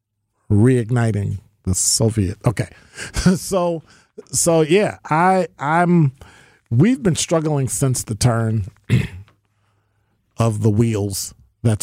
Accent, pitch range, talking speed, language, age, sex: American, 105-160 Hz, 95 wpm, English, 40-59, male